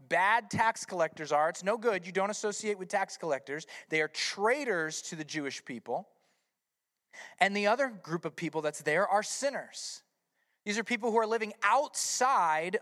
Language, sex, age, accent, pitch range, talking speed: English, male, 30-49, American, 190-265 Hz, 175 wpm